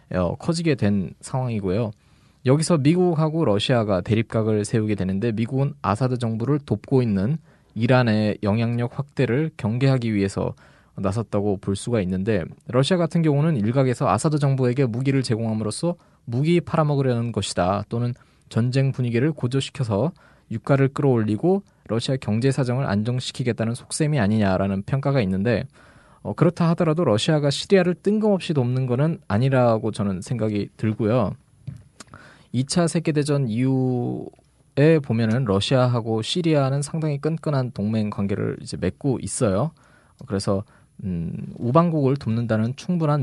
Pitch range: 105-145 Hz